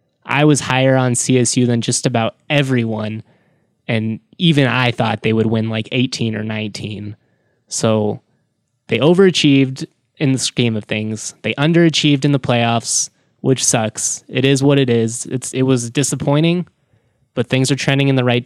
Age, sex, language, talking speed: 20-39, male, English, 165 wpm